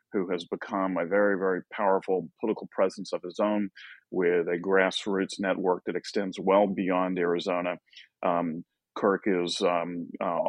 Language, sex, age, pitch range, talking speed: English, male, 40-59, 95-105 Hz, 150 wpm